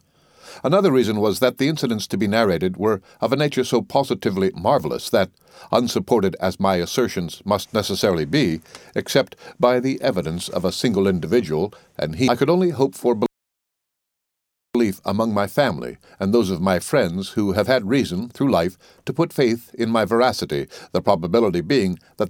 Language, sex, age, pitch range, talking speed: English, male, 60-79, 100-130 Hz, 170 wpm